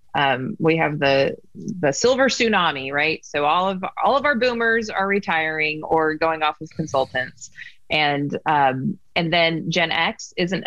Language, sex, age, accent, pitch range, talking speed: English, female, 30-49, American, 150-205 Hz, 165 wpm